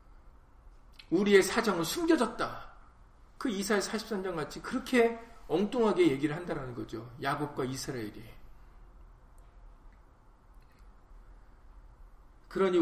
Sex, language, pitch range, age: male, Korean, 160-210 Hz, 40-59